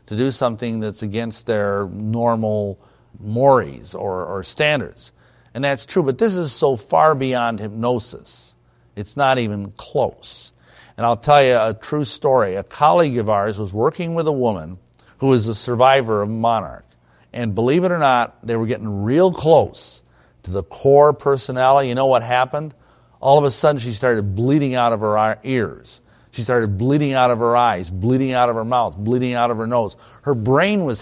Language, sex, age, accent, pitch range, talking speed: English, male, 50-69, American, 110-135 Hz, 185 wpm